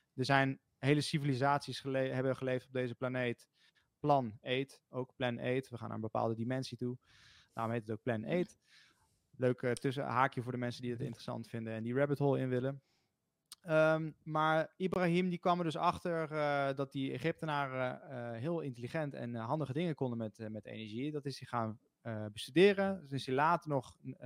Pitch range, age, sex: 125-150 Hz, 20-39, male